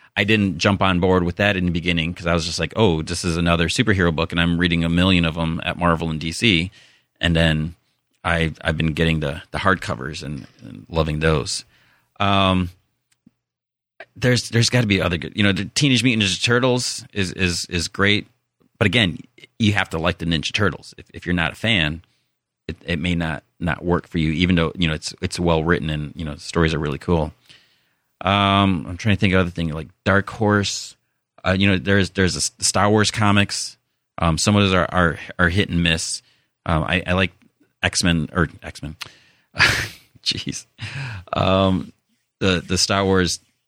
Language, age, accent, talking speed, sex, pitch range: English, 30-49, American, 205 wpm, male, 80-100 Hz